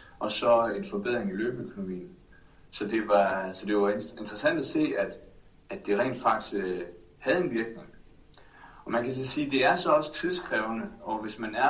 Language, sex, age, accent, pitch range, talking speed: Danish, male, 60-79, native, 95-135 Hz, 180 wpm